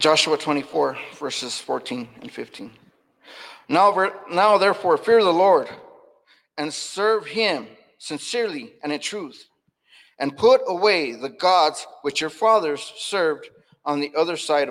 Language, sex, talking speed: English, male, 130 wpm